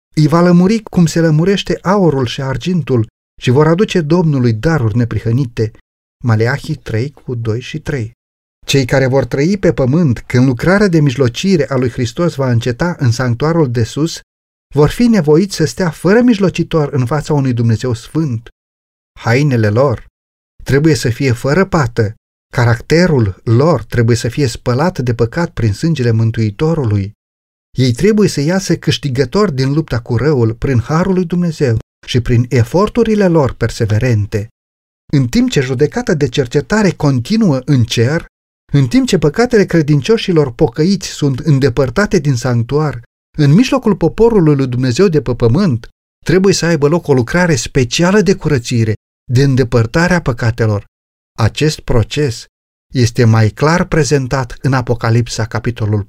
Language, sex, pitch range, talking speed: Romanian, male, 115-165 Hz, 145 wpm